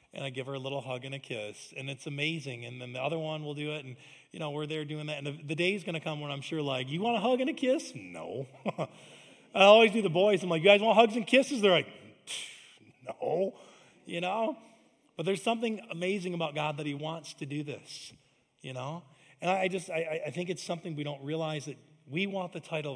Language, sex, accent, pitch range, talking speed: English, male, American, 145-190 Hz, 250 wpm